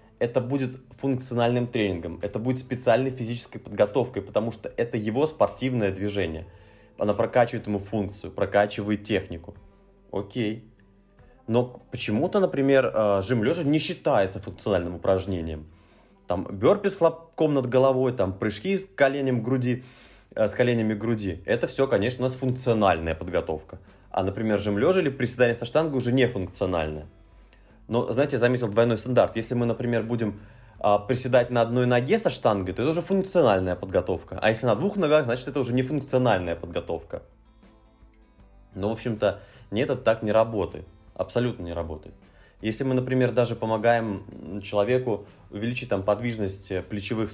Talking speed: 145 wpm